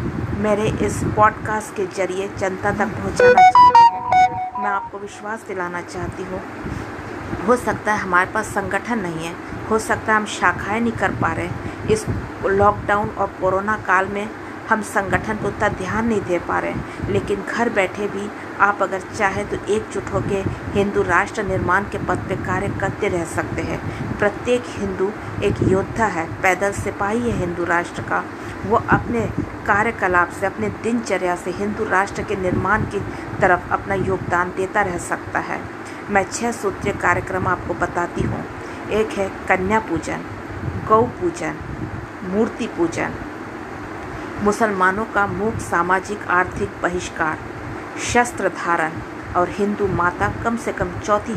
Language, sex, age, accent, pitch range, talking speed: Hindi, female, 50-69, native, 180-220 Hz, 150 wpm